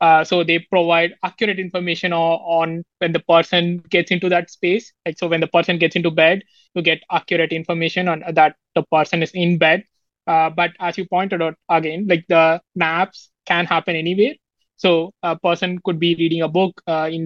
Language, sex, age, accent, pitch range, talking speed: English, male, 20-39, Indian, 165-185 Hz, 200 wpm